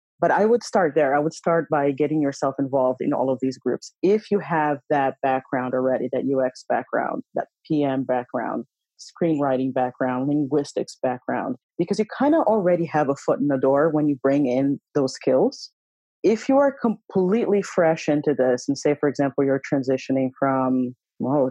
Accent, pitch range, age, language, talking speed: American, 130-155 Hz, 30-49, English, 180 wpm